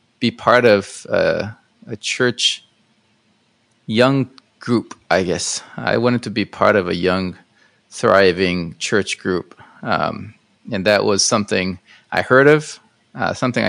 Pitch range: 95-120 Hz